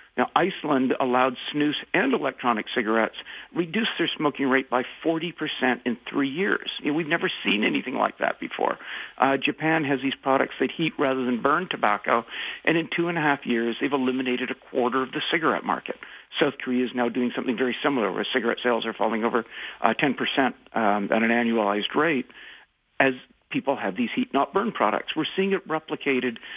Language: English